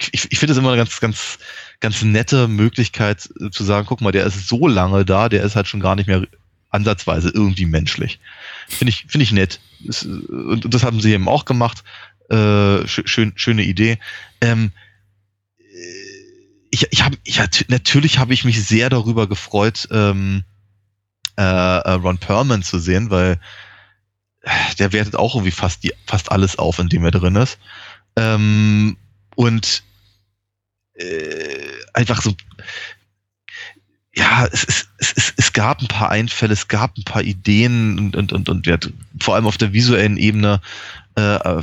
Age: 20-39